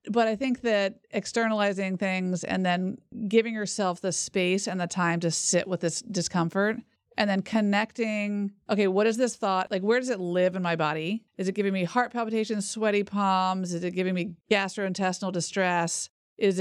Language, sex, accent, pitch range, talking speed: English, female, American, 175-205 Hz, 185 wpm